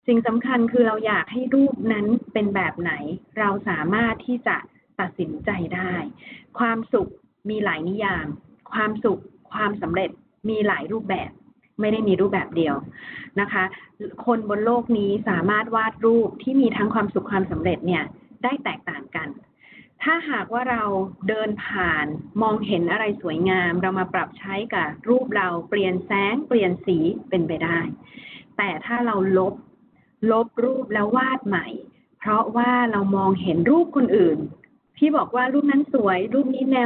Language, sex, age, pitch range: Thai, female, 20-39, 190-240 Hz